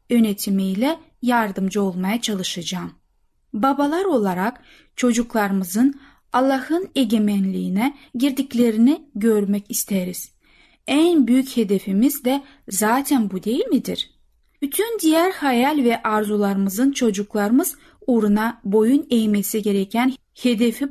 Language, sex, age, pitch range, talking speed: Turkish, female, 30-49, 215-275 Hz, 90 wpm